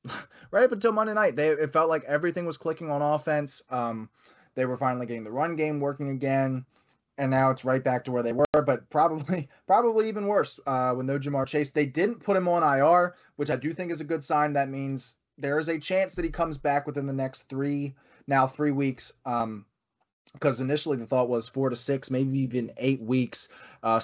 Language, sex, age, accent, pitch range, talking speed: English, male, 20-39, American, 125-150 Hz, 220 wpm